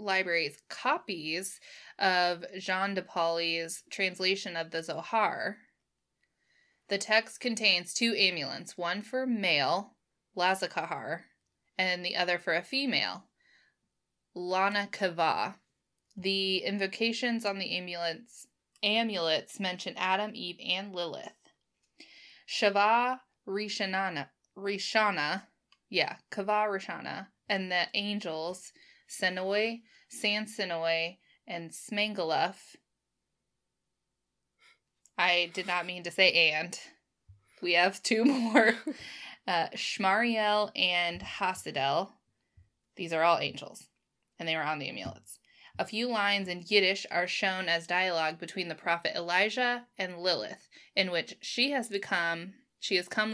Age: 20-39